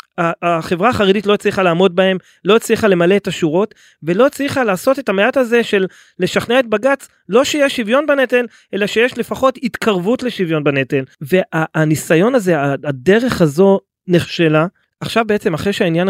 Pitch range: 170-220 Hz